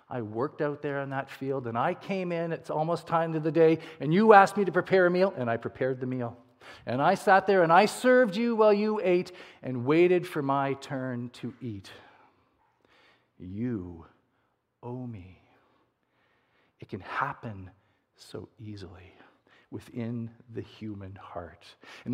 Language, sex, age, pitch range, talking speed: English, male, 40-59, 120-180 Hz, 165 wpm